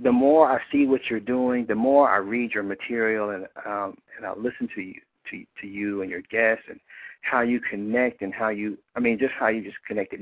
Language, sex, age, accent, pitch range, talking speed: English, male, 50-69, American, 105-140 Hz, 235 wpm